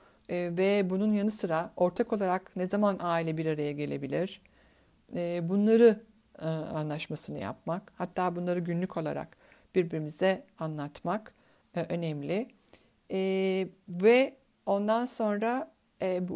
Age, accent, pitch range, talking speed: 60-79, Turkish, 165-215 Hz, 95 wpm